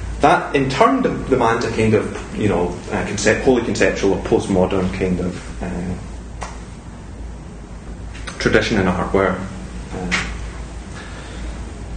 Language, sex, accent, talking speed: English, male, British, 115 wpm